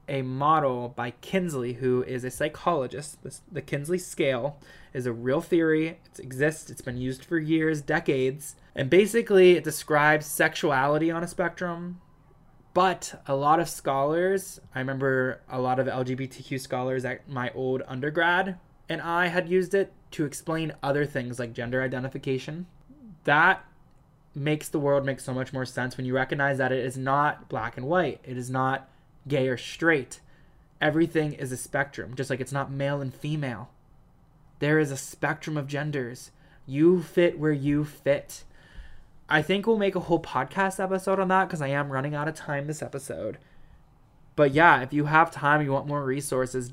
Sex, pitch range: male, 130-160 Hz